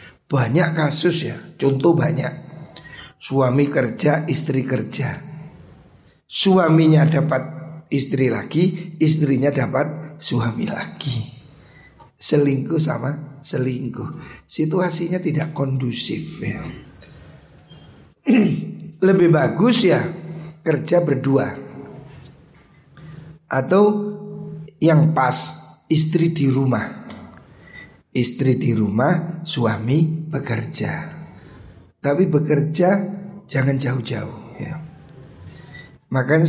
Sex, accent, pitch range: male, native, 130-160 Hz